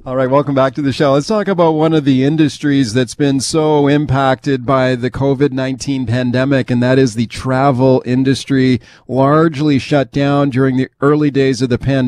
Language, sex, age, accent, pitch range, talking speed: English, male, 40-59, American, 130-145 Hz, 185 wpm